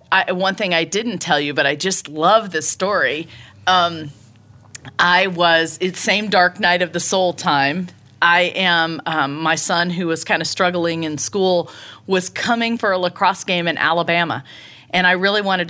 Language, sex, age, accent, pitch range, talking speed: English, female, 40-59, American, 155-200 Hz, 180 wpm